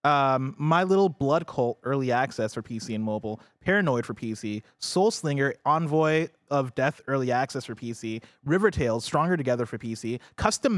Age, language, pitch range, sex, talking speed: 20-39, English, 115-155 Hz, male, 165 wpm